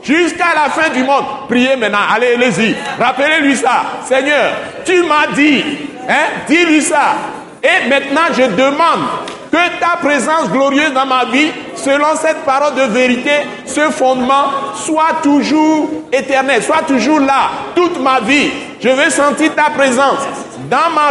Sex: male